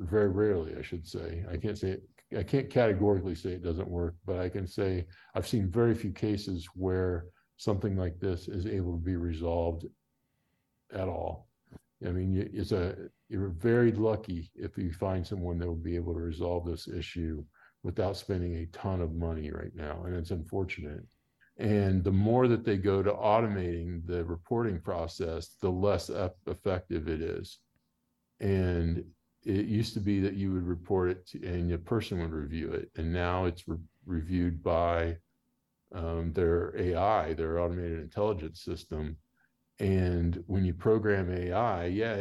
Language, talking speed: English, 165 wpm